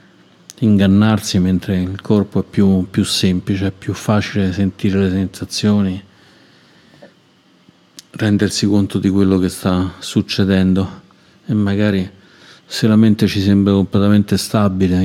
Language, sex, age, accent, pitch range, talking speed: Italian, male, 40-59, native, 95-105 Hz, 120 wpm